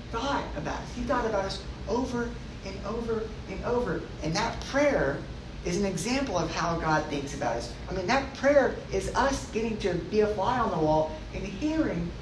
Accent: American